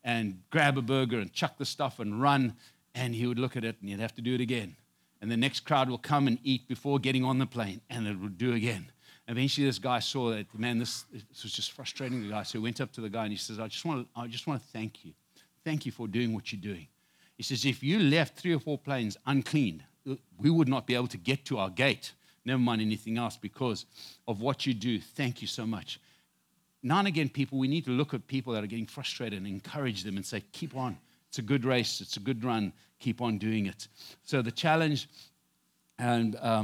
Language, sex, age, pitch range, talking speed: English, male, 60-79, 115-145 Hz, 245 wpm